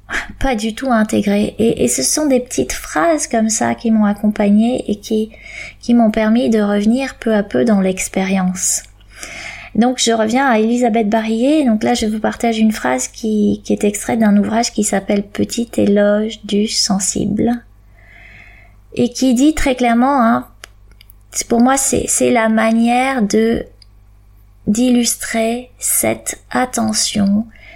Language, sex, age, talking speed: French, female, 20-39, 150 wpm